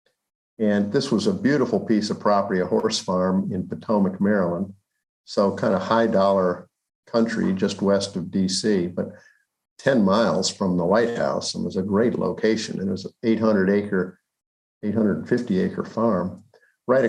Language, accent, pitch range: English, American, 100-115 Hz